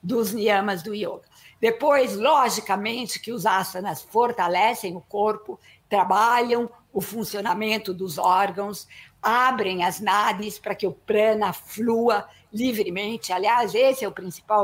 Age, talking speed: 50-69, 125 wpm